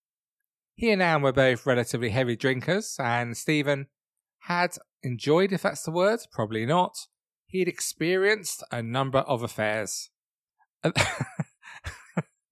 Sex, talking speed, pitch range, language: male, 115 wpm, 120-160 Hz, English